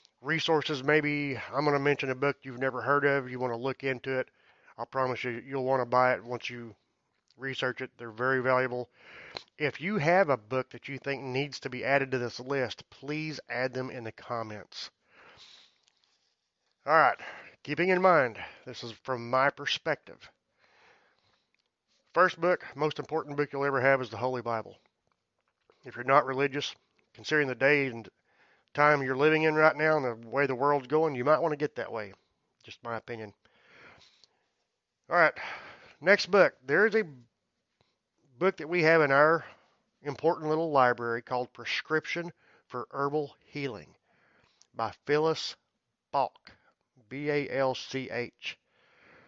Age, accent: 30-49, American